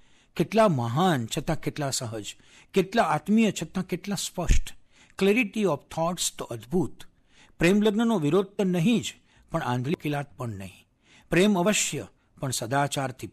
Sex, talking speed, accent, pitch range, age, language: male, 130 wpm, native, 125-195 Hz, 60-79, Gujarati